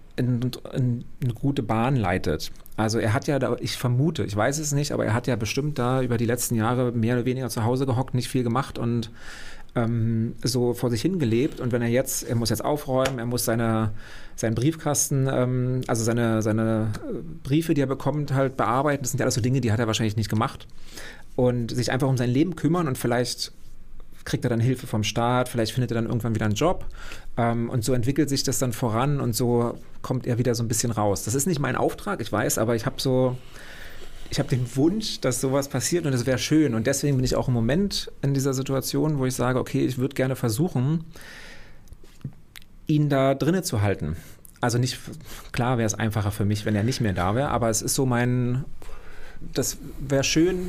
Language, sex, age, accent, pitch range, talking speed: German, male, 30-49, German, 115-135 Hz, 215 wpm